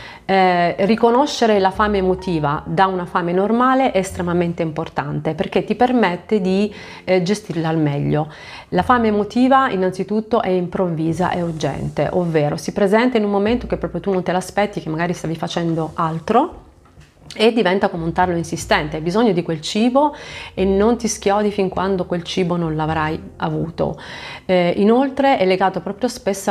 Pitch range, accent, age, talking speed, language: 165-205 Hz, native, 30-49, 165 wpm, Italian